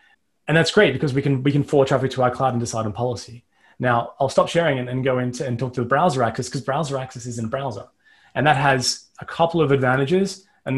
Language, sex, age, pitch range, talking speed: English, male, 20-39, 125-155 Hz, 255 wpm